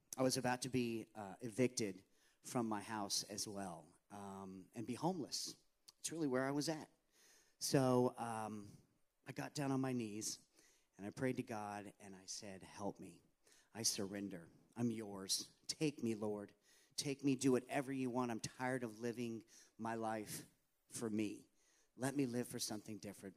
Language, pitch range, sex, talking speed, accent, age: English, 105-130 Hz, male, 170 wpm, American, 40-59